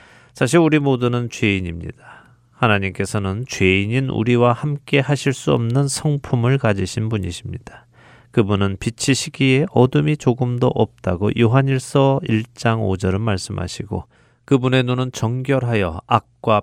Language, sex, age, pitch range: Korean, male, 40-59, 105-135 Hz